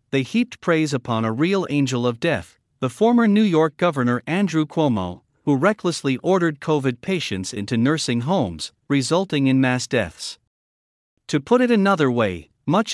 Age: 50-69